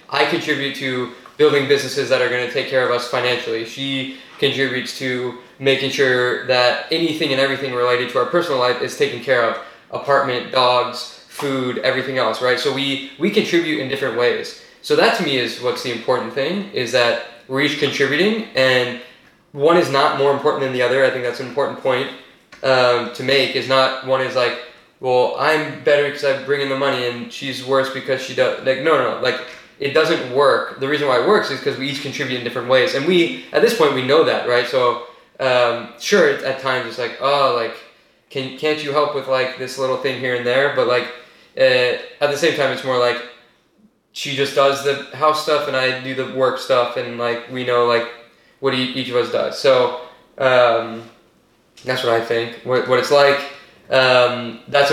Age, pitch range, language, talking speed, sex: 20-39, 125-140 Hz, English, 210 wpm, male